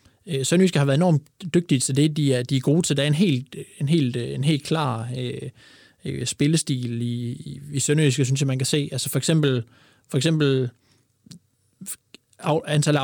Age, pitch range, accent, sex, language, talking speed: 20-39, 130-150 Hz, native, male, Danish, 180 wpm